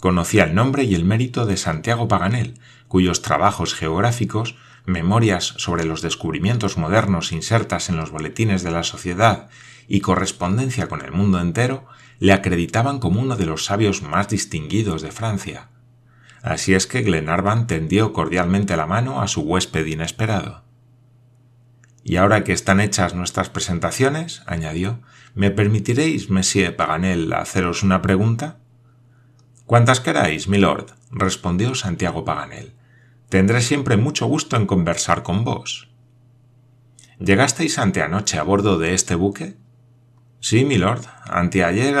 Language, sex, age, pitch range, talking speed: Spanish, male, 30-49, 90-120 Hz, 135 wpm